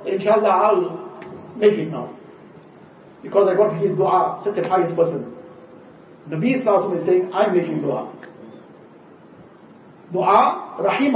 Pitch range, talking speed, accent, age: 195-255 Hz, 125 wpm, Indian, 50-69